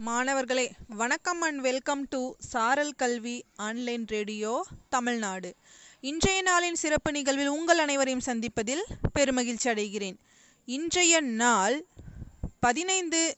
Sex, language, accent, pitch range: female, Tamil, native, 230-290 Hz